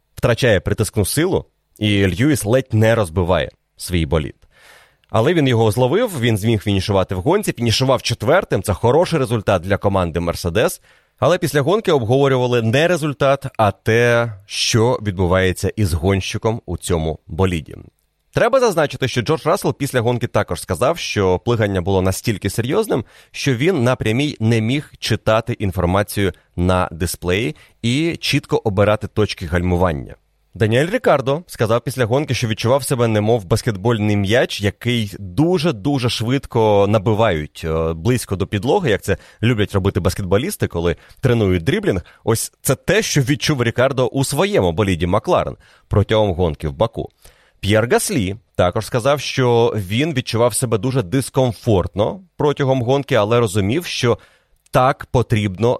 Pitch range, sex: 100-130 Hz, male